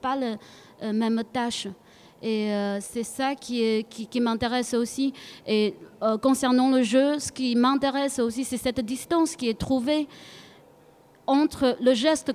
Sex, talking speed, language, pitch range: female, 160 wpm, French, 235-280 Hz